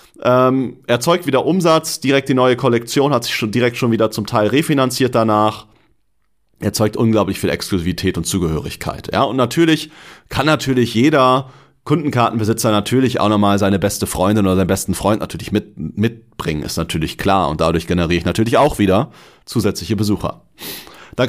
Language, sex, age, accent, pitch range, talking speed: German, male, 40-59, German, 105-130 Hz, 150 wpm